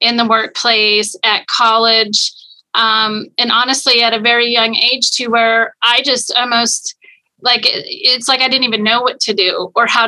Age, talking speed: 30-49, 180 wpm